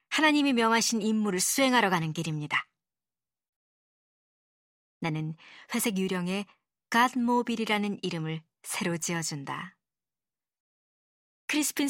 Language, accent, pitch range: Korean, native, 170-235 Hz